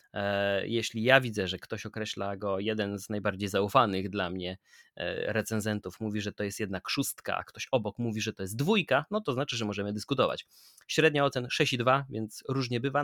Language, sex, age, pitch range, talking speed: Polish, male, 20-39, 105-125 Hz, 185 wpm